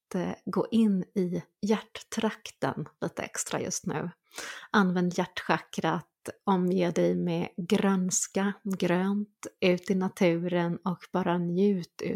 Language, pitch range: Swedish, 180-210 Hz